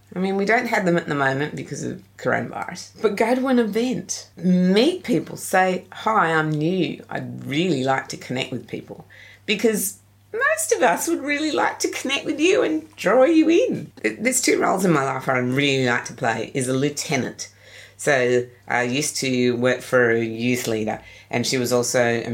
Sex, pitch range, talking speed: female, 115-160 Hz, 195 wpm